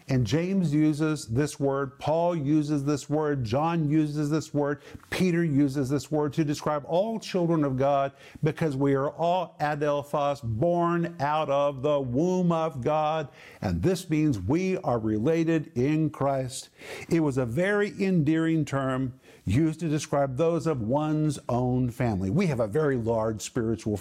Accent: American